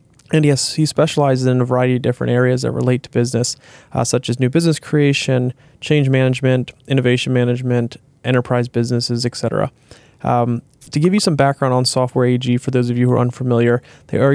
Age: 20-39